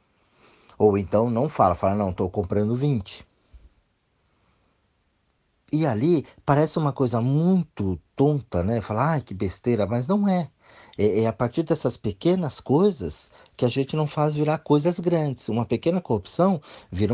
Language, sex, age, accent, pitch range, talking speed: Portuguese, male, 40-59, Brazilian, 100-150 Hz, 150 wpm